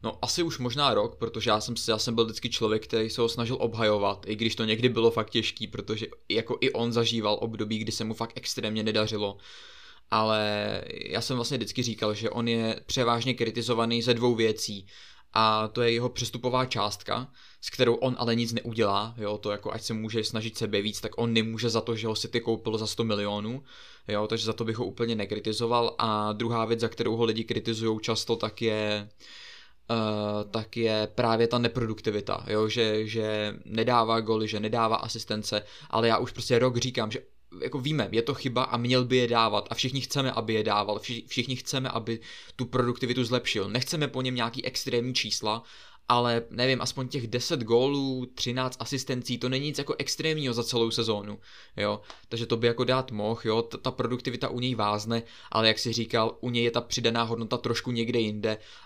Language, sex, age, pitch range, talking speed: Czech, male, 20-39, 110-125 Hz, 200 wpm